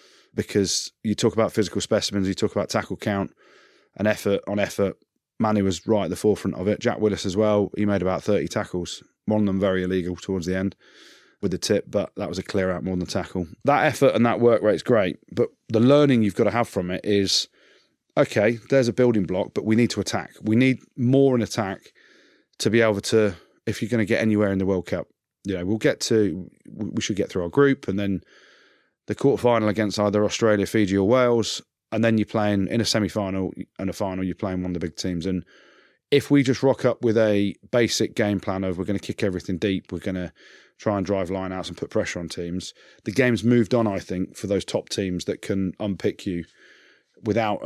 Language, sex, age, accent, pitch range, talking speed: English, male, 30-49, British, 95-115 Hz, 230 wpm